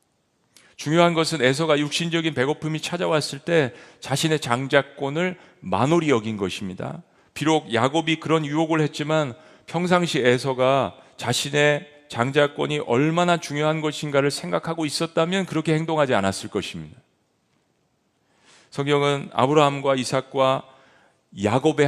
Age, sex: 40-59, male